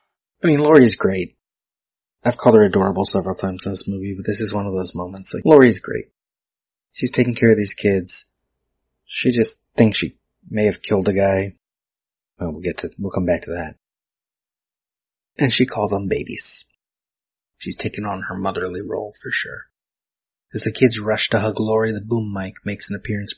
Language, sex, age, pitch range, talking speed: English, male, 30-49, 95-125 Hz, 185 wpm